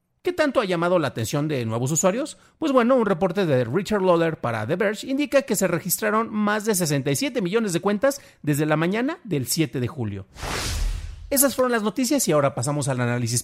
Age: 40-59